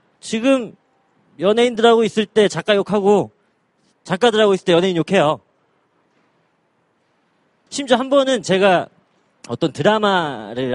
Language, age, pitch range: Korean, 30-49, 130-205 Hz